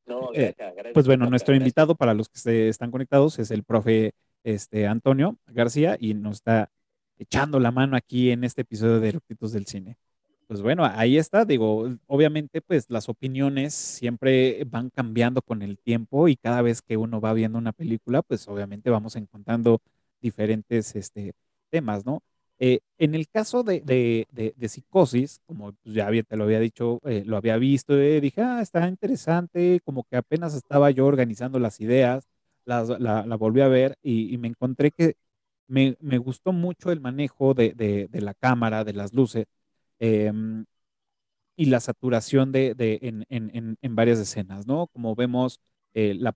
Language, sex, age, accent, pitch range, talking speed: Spanish, male, 30-49, Mexican, 110-135 Hz, 175 wpm